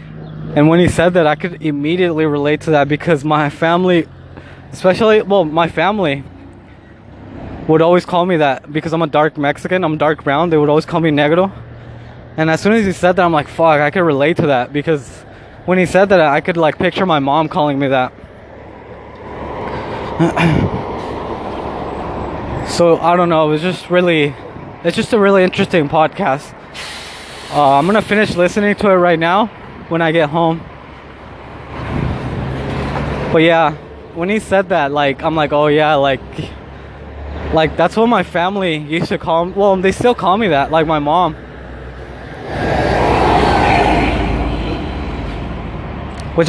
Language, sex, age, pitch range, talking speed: English, male, 20-39, 140-175 Hz, 160 wpm